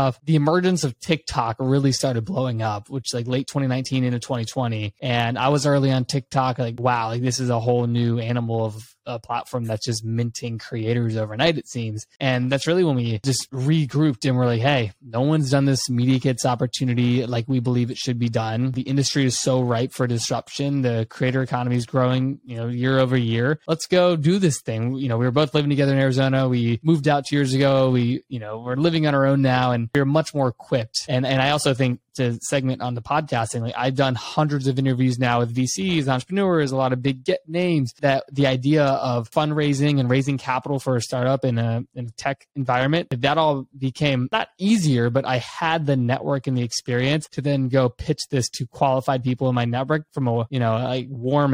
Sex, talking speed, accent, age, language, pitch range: male, 220 wpm, American, 20-39, English, 120-140 Hz